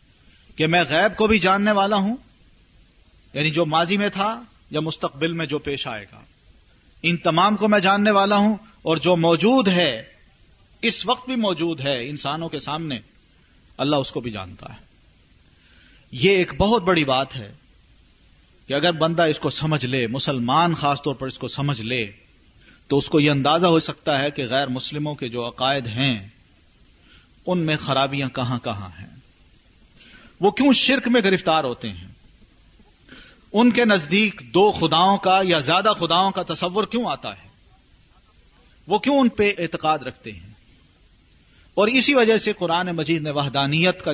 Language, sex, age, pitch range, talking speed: Urdu, male, 40-59, 125-180 Hz, 170 wpm